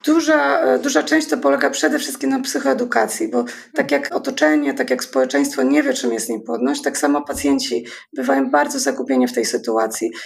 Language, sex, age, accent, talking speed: Polish, female, 30-49, native, 175 wpm